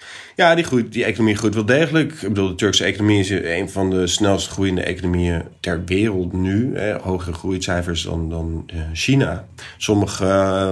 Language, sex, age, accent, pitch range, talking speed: Dutch, male, 30-49, Dutch, 90-105 Hz, 170 wpm